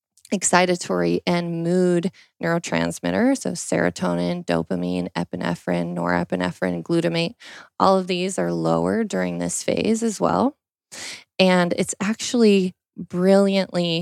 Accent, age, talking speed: American, 20-39, 105 wpm